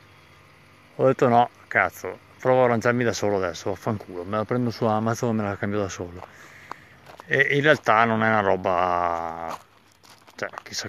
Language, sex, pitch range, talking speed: Italian, male, 105-140 Hz, 170 wpm